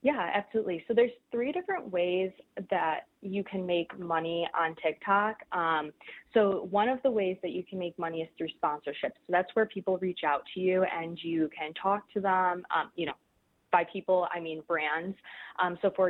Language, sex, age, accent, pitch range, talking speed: English, female, 20-39, American, 165-190 Hz, 200 wpm